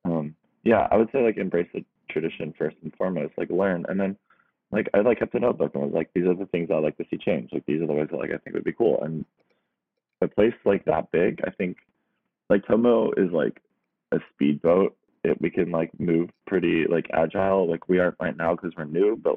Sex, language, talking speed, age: male, English, 235 wpm, 20-39